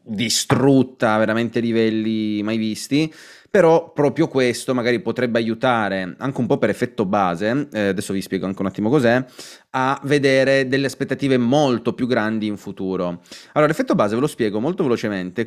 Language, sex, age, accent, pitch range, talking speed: Italian, male, 30-49, native, 100-135 Hz, 165 wpm